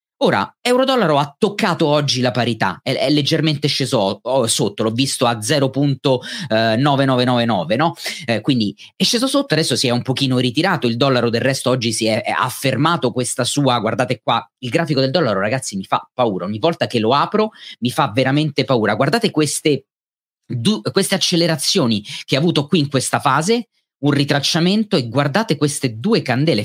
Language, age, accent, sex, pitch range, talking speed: Italian, 30-49, native, male, 115-160 Hz, 175 wpm